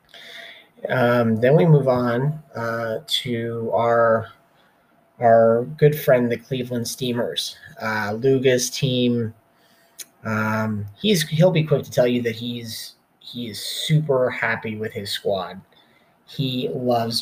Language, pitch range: English, 115-125 Hz